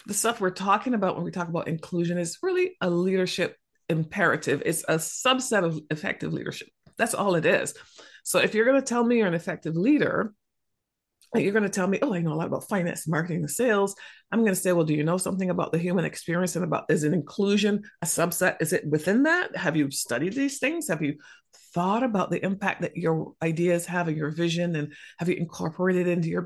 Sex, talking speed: female, 230 wpm